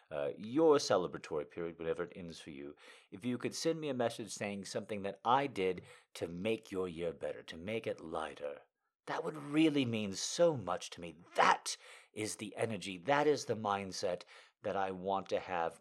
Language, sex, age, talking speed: English, male, 50-69, 195 wpm